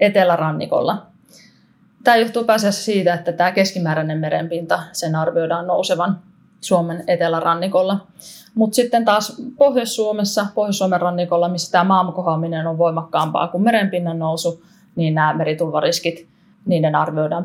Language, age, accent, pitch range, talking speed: Finnish, 20-39, native, 170-195 Hz, 115 wpm